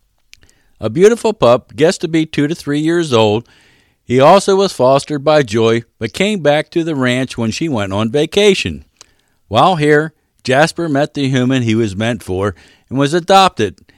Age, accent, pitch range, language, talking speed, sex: 50-69, American, 110-180 Hz, English, 175 wpm, male